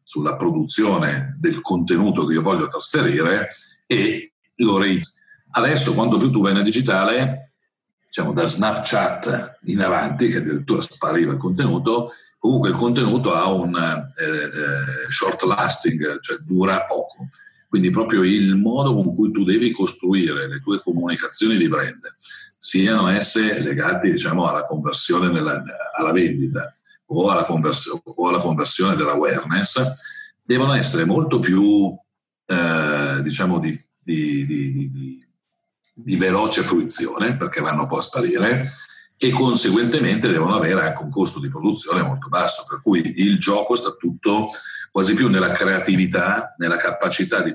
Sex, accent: male, native